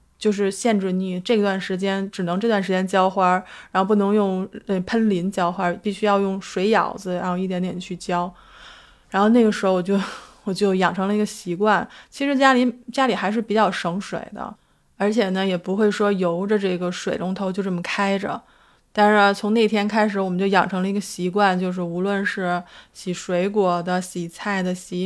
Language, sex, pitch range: Chinese, female, 180-210 Hz